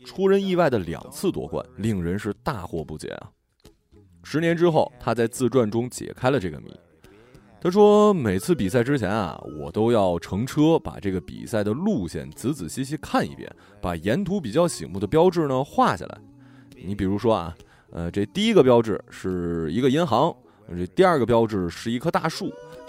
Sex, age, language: male, 20-39, Chinese